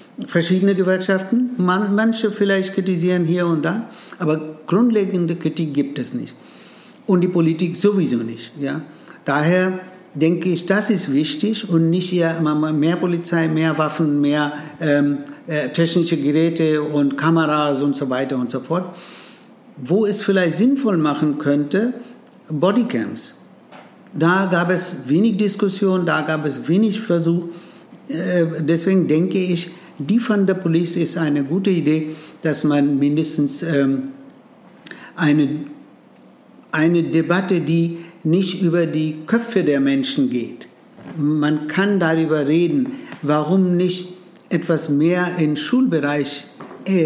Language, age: German, 60-79